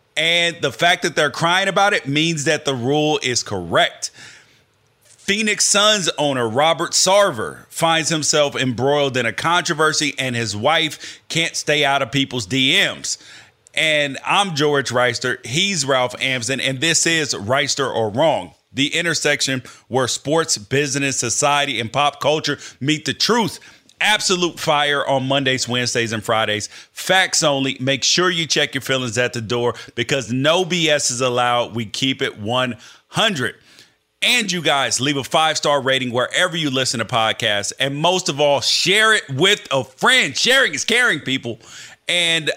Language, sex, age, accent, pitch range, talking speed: English, male, 30-49, American, 130-165 Hz, 160 wpm